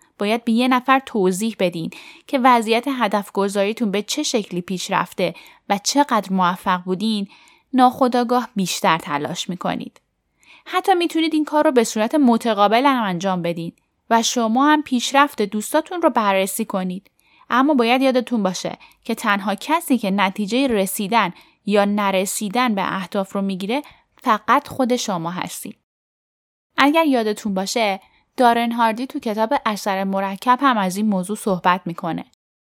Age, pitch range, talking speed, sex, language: 10-29, 195-255 Hz, 140 wpm, female, Persian